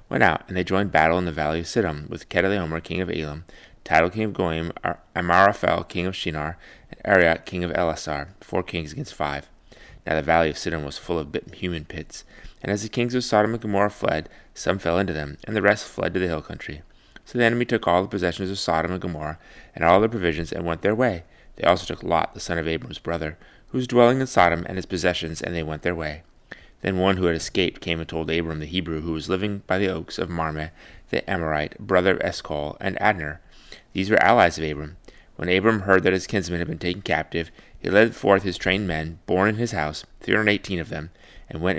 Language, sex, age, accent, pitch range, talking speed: English, male, 30-49, American, 80-100 Hz, 235 wpm